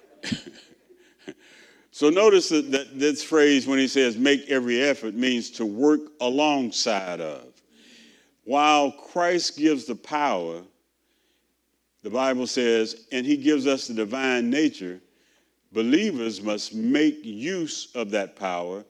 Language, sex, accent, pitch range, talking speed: English, male, American, 110-150 Hz, 120 wpm